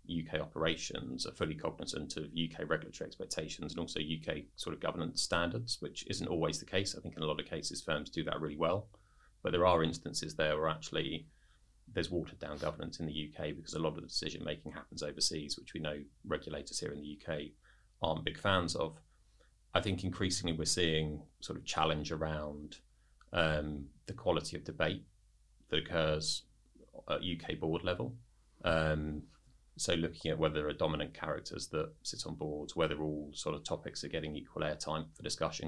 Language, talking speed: English, 190 wpm